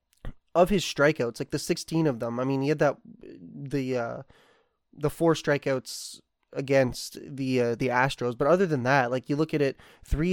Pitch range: 130-155 Hz